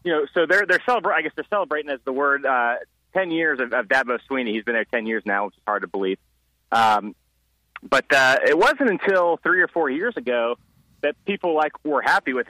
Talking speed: 230 wpm